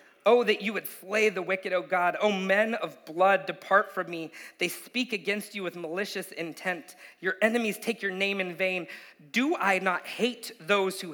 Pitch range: 165-205 Hz